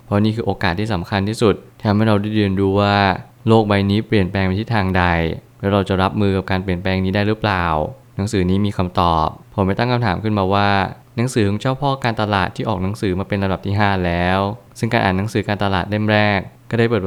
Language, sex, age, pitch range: Thai, male, 20-39, 95-115 Hz